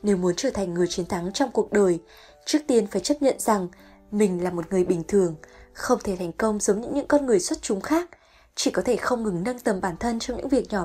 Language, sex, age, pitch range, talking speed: Vietnamese, female, 20-39, 200-270 Hz, 255 wpm